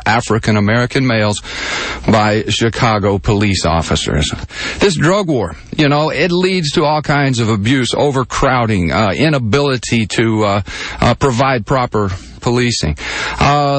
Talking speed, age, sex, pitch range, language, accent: 120 wpm, 50-69, male, 110-145 Hz, English, American